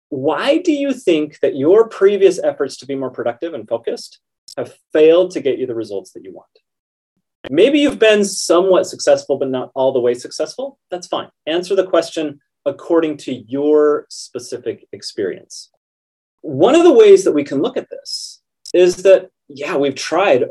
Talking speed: 175 wpm